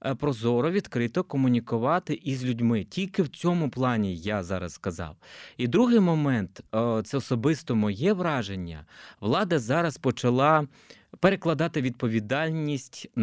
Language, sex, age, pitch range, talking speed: Ukrainian, male, 20-39, 115-150 Hz, 110 wpm